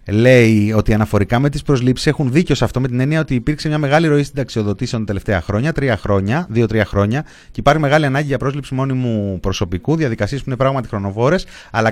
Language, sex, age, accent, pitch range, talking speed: Greek, male, 30-49, native, 115-160 Hz, 205 wpm